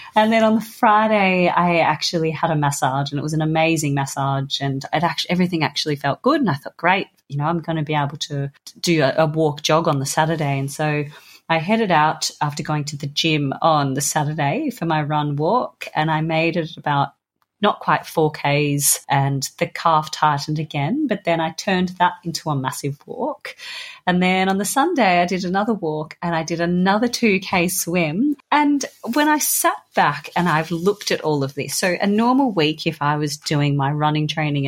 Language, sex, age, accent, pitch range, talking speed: English, female, 30-49, Australian, 145-185 Hz, 210 wpm